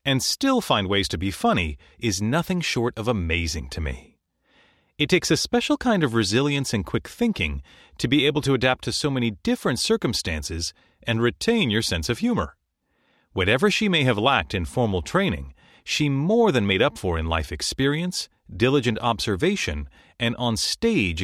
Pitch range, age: 90-150 Hz, 30-49